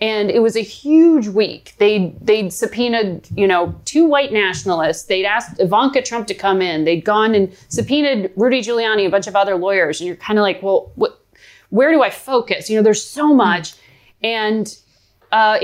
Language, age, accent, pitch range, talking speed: English, 30-49, American, 190-245 Hz, 190 wpm